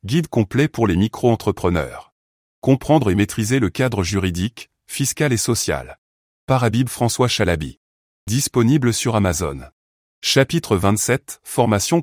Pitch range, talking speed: 95-130 Hz, 115 wpm